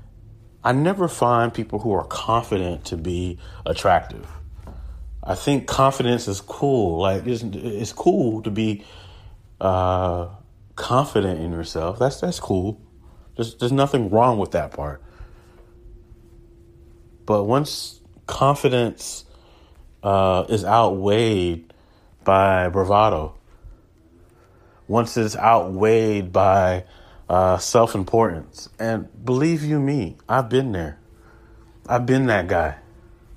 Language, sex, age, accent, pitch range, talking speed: English, male, 30-49, American, 95-120 Hz, 110 wpm